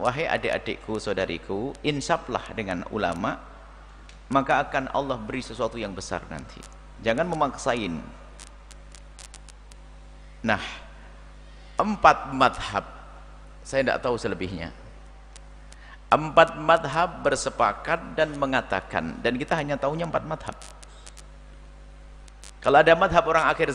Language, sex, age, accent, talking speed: Indonesian, male, 50-69, native, 100 wpm